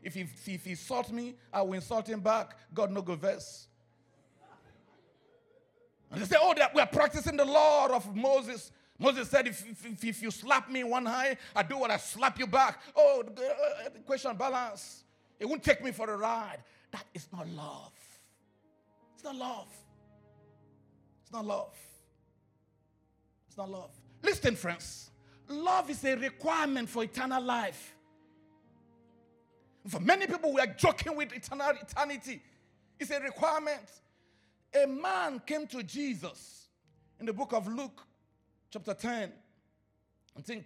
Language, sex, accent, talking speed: English, male, Nigerian, 150 wpm